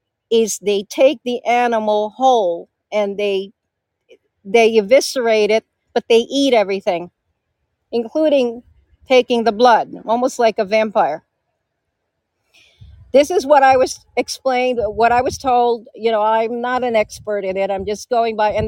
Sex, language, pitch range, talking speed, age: female, English, 205-240 Hz, 150 wpm, 50-69